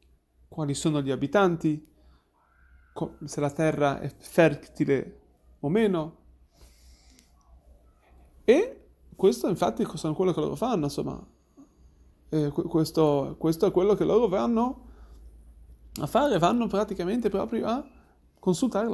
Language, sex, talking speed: Italian, male, 110 wpm